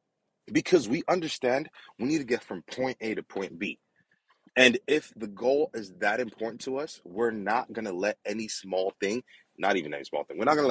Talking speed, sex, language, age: 220 wpm, male, English, 30-49